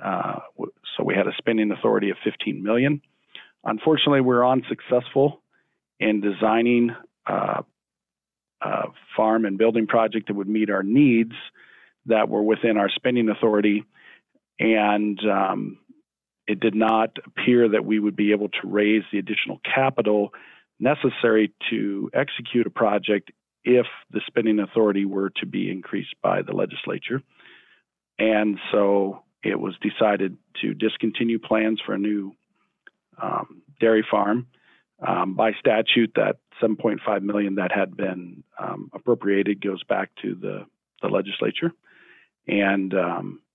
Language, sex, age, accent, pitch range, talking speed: English, male, 40-59, American, 105-120 Hz, 130 wpm